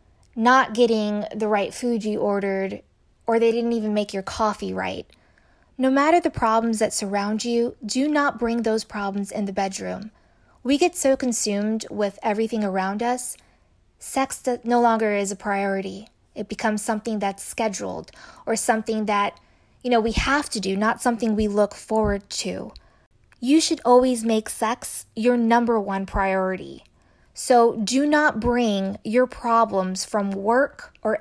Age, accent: 20-39, American